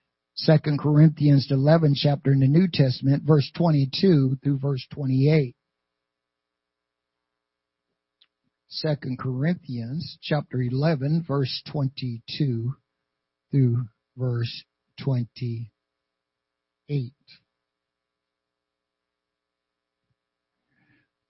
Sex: male